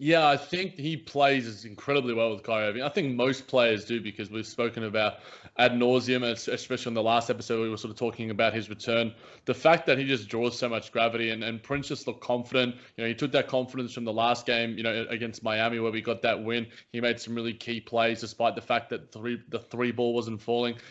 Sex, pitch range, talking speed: male, 115-130 Hz, 245 wpm